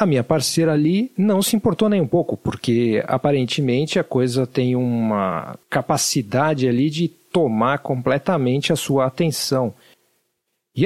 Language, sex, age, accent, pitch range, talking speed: Portuguese, male, 50-69, Brazilian, 130-175 Hz, 140 wpm